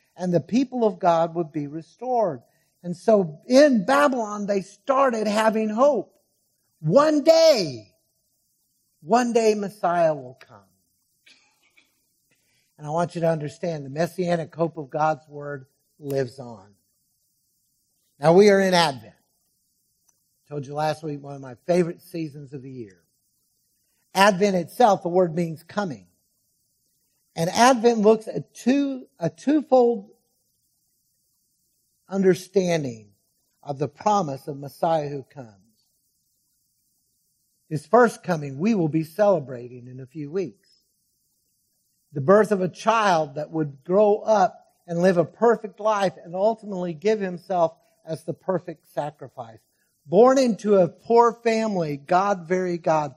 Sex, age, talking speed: male, 60-79, 130 wpm